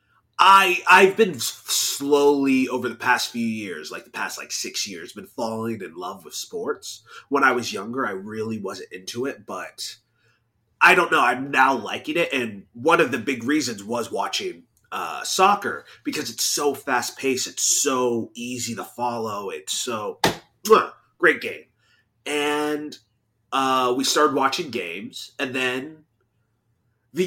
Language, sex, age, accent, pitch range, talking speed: English, male, 30-49, American, 115-175 Hz, 155 wpm